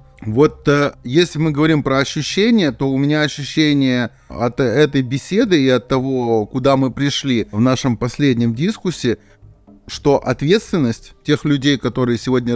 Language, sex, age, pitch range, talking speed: Russian, male, 30-49, 120-150 Hz, 140 wpm